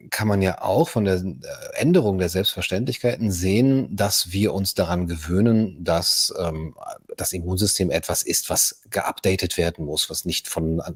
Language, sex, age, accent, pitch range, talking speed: German, male, 40-59, German, 90-120 Hz, 155 wpm